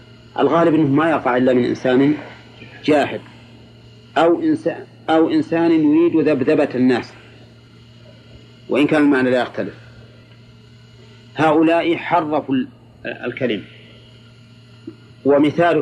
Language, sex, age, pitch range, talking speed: Arabic, male, 50-69, 115-140 Hz, 100 wpm